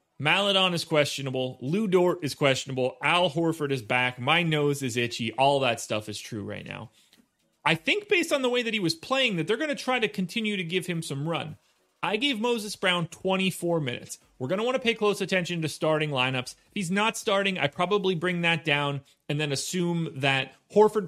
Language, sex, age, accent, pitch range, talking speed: English, male, 30-49, American, 145-200 Hz, 215 wpm